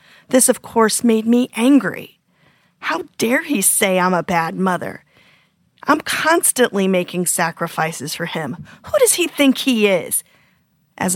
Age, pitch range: 40-59, 175-215 Hz